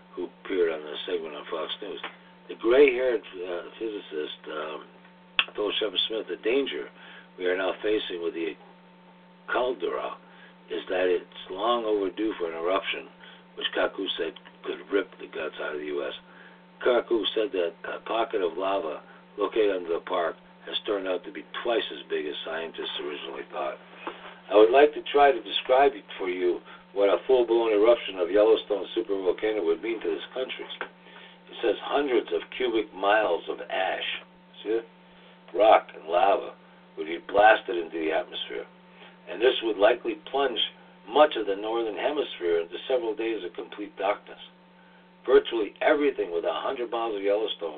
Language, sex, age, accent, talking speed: English, male, 60-79, American, 165 wpm